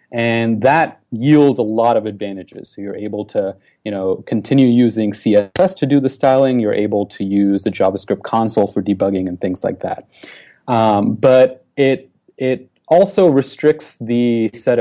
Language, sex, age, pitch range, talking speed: English, male, 30-49, 100-125 Hz, 165 wpm